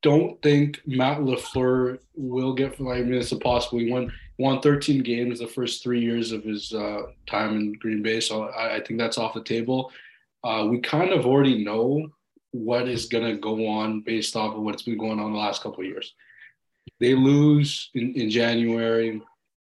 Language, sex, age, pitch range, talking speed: English, male, 20-39, 110-130 Hz, 195 wpm